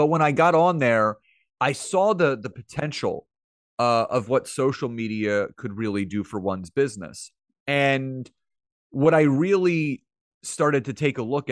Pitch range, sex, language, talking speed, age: 100-135 Hz, male, English, 160 wpm, 30-49